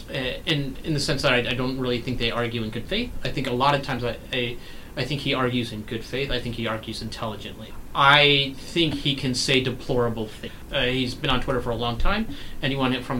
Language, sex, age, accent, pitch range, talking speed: English, male, 30-49, American, 120-140 Hz, 245 wpm